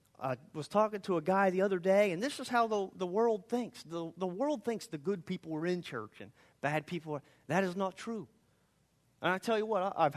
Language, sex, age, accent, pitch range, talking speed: English, male, 30-49, American, 170-235 Hz, 250 wpm